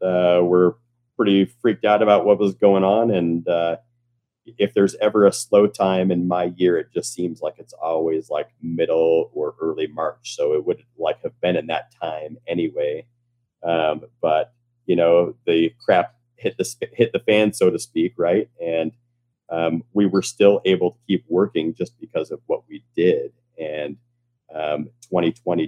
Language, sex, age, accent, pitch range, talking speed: English, male, 40-59, American, 85-120 Hz, 175 wpm